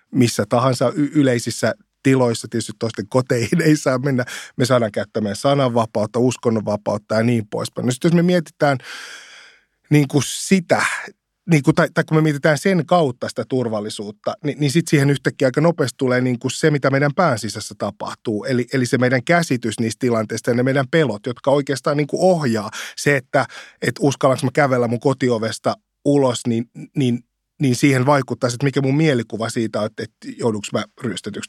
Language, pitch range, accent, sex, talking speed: Finnish, 120-145 Hz, native, male, 170 wpm